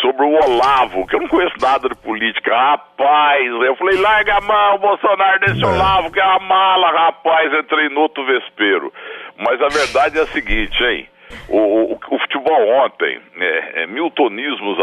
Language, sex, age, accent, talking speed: Portuguese, male, 60-79, Brazilian, 180 wpm